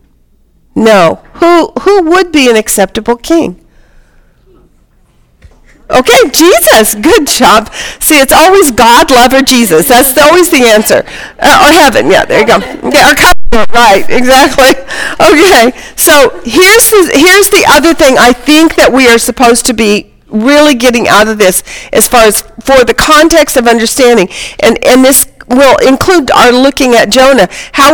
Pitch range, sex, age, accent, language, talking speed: 235-315 Hz, female, 50-69, American, English, 160 wpm